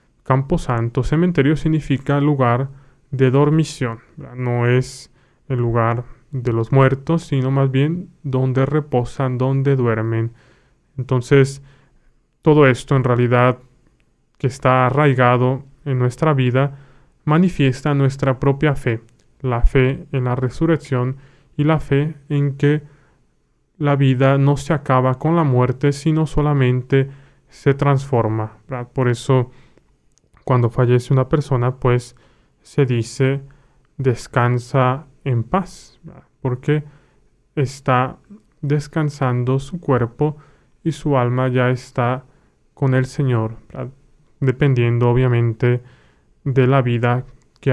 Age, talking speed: 20-39, 115 wpm